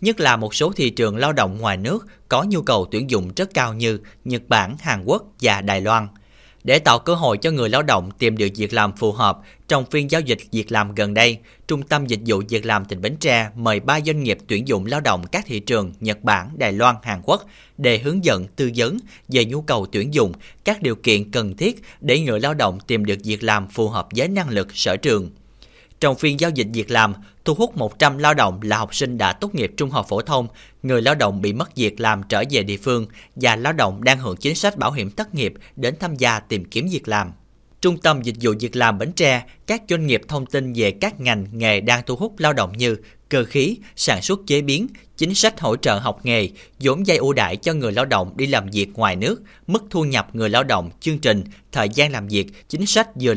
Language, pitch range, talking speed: Vietnamese, 105-145 Hz, 245 wpm